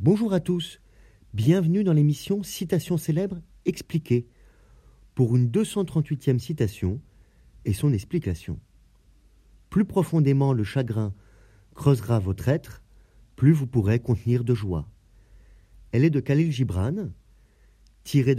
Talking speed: 115 wpm